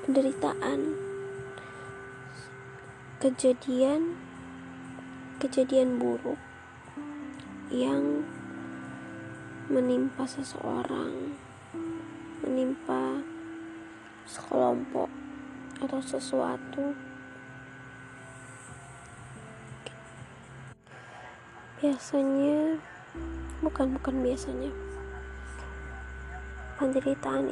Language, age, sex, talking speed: Indonesian, 20-39, female, 35 wpm